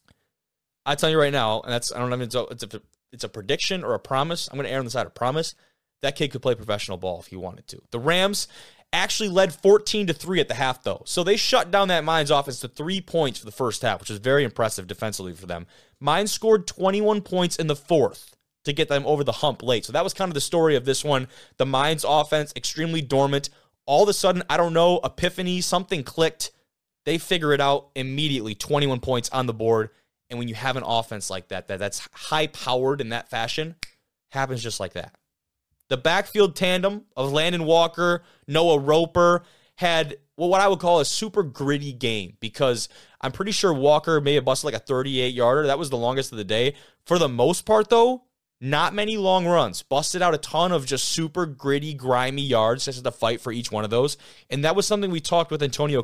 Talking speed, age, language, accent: 220 wpm, 20-39, English, American